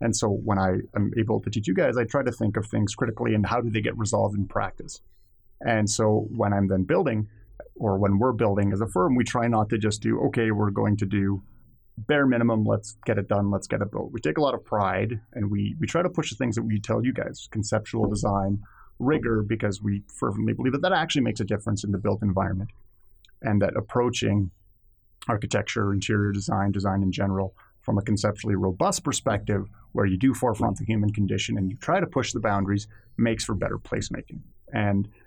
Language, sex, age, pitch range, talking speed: English, male, 30-49, 100-115 Hz, 220 wpm